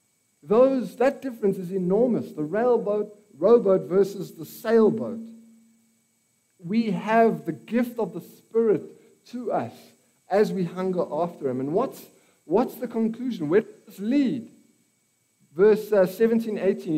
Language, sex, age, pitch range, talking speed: English, male, 60-79, 165-220 Hz, 130 wpm